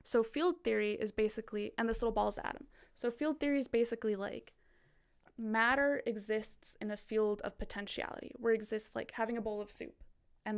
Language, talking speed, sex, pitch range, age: English, 185 wpm, female, 210-235 Hz, 10-29